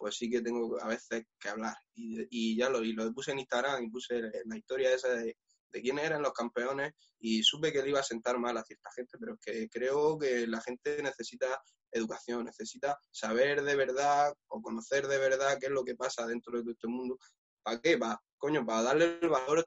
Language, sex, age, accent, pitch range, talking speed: Spanish, male, 20-39, Spanish, 115-150 Hz, 225 wpm